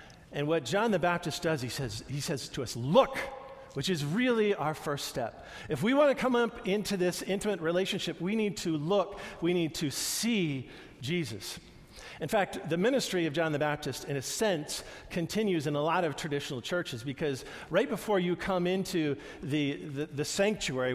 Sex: male